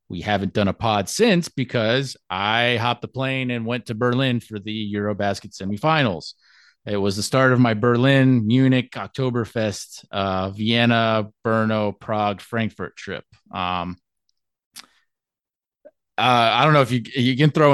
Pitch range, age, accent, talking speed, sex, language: 100-125 Hz, 30-49, American, 150 wpm, male, English